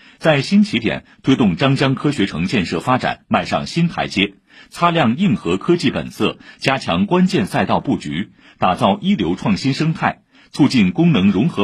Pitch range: 135-190 Hz